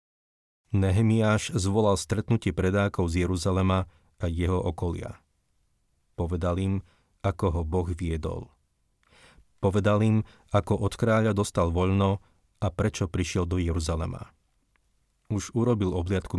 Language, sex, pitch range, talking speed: Slovak, male, 90-105 Hz, 110 wpm